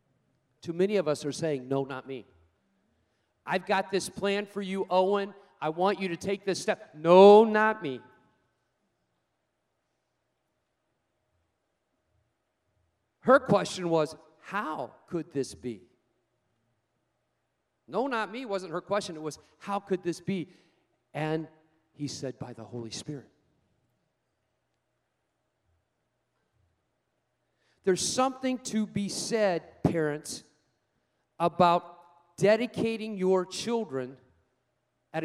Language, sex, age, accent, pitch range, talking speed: English, male, 40-59, American, 130-200 Hz, 105 wpm